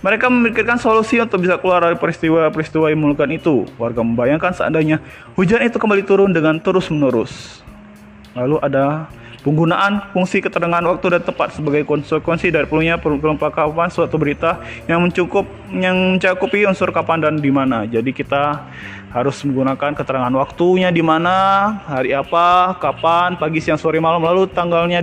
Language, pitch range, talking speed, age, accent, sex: Indonesian, 145-195 Hz, 145 wpm, 20-39, native, male